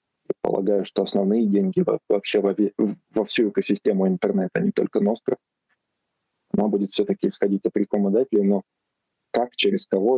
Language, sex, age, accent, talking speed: Russian, male, 20-39, native, 135 wpm